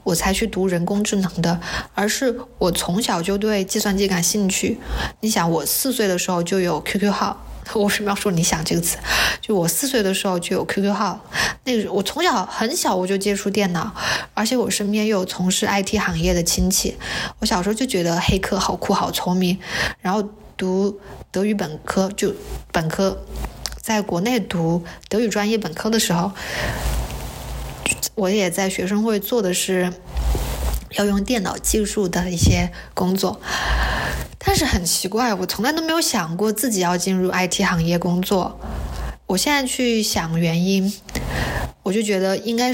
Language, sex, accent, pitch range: Chinese, female, native, 180-215 Hz